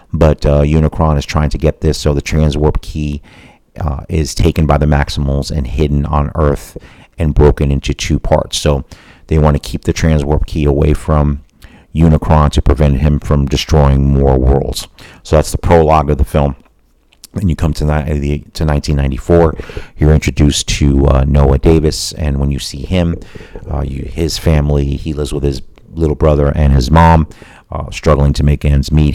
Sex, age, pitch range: male, 40-59, 70-80 Hz